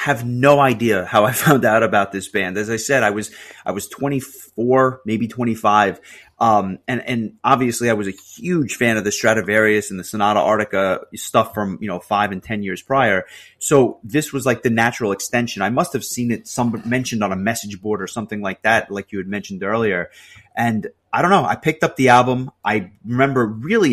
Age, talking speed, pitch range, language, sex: 30-49, 210 wpm, 105-135 Hz, English, male